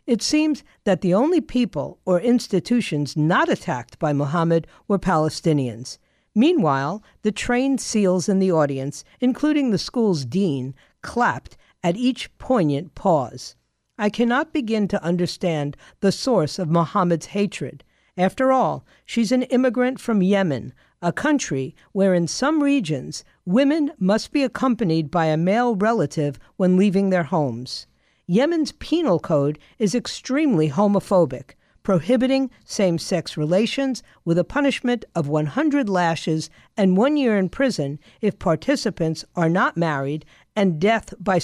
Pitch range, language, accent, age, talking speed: 160-240 Hz, English, American, 50-69, 135 wpm